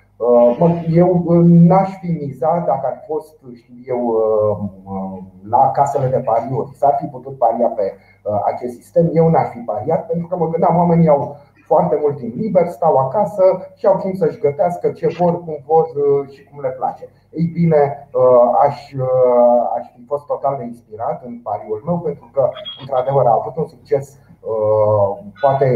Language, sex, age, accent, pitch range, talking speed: Romanian, male, 30-49, native, 125-170 Hz, 160 wpm